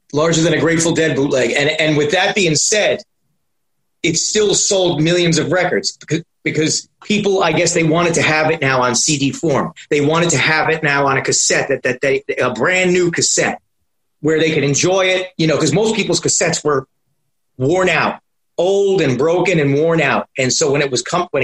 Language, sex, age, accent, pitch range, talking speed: English, male, 30-49, American, 135-170 Hz, 210 wpm